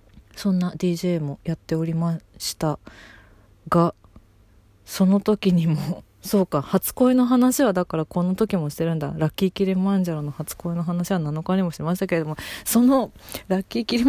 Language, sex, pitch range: Japanese, female, 145-195 Hz